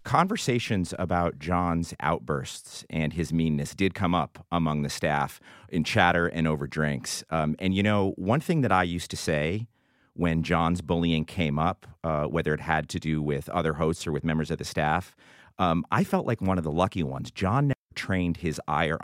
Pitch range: 80-105 Hz